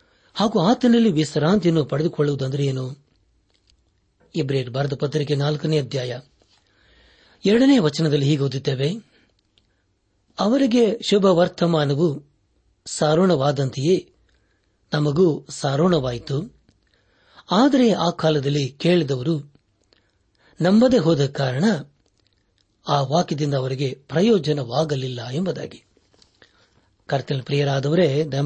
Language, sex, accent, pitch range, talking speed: Kannada, male, native, 125-180 Hz, 65 wpm